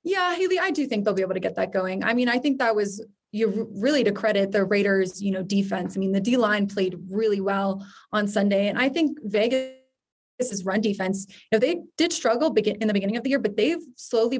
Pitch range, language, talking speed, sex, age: 195-230 Hz, English, 240 wpm, female, 20-39